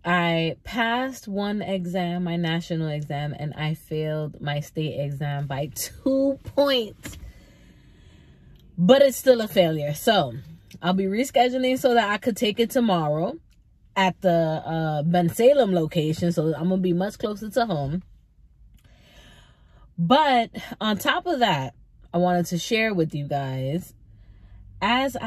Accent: American